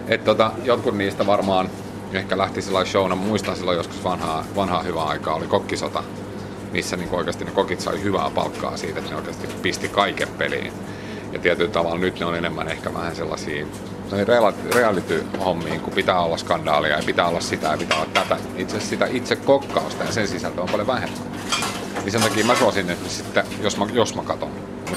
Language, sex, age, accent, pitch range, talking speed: Finnish, male, 30-49, native, 85-100 Hz, 185 wpm